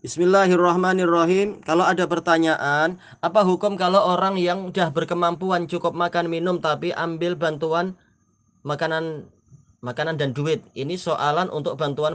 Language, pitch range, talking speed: Indonesian, 150-185 Hz, 125 wpm